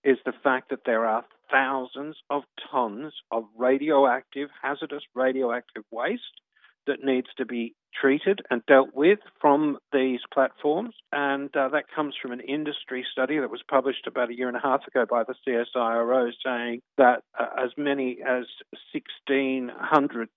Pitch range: 125-140 Hz